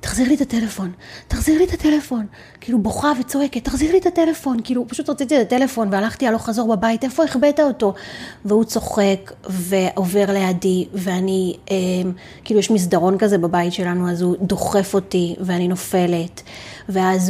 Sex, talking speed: female, 160 wpm